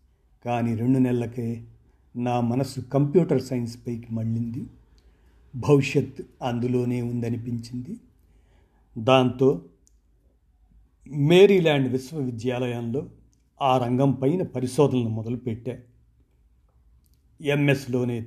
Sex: male